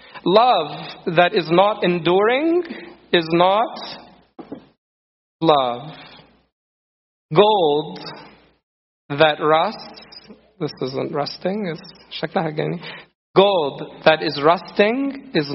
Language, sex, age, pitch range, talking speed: English, male, 40-59, 150-195 Hz, 80 wpm